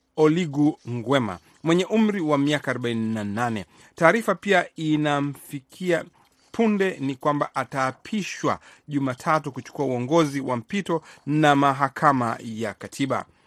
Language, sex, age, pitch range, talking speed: Swahili, male, 40-59, 130-165 Hz, 100 wpm